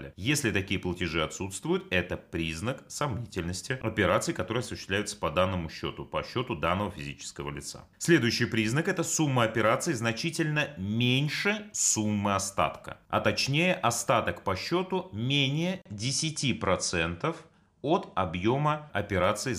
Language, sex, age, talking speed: Russian, male, 30-49, 115 wpm